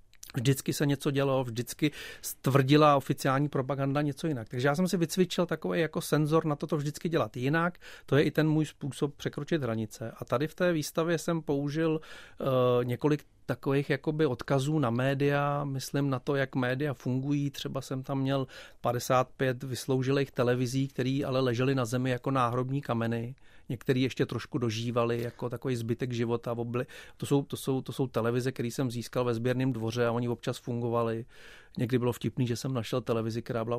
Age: 40-59